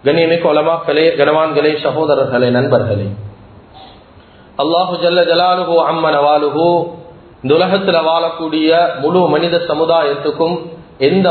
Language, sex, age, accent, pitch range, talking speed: English, male, 40-59, Indian, 160-190 Hz, 115 wpm